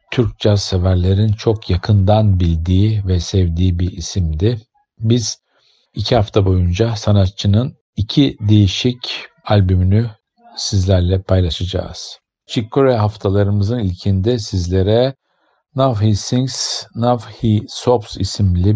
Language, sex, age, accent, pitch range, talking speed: Turkish, male, 50-69, native, 95-115 Hz, 95 wpm